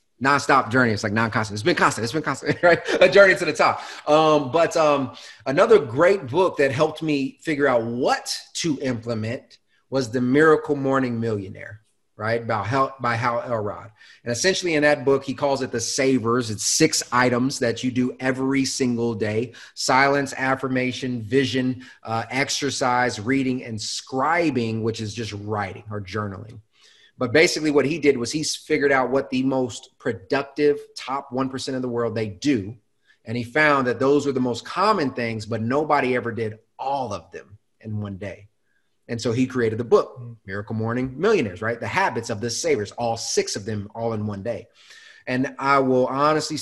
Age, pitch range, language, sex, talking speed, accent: 30-49, 115-140 Hz, English, male, 180 wpm, American